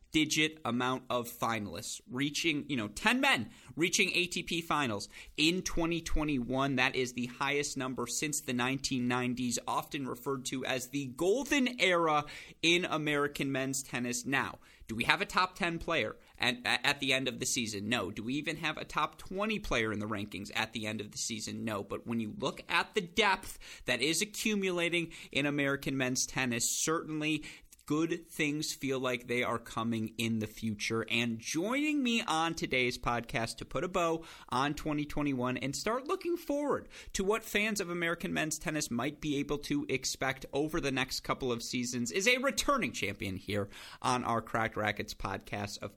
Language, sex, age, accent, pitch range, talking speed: English, male, 30-49, American, 120-165 Hz, 180 wpm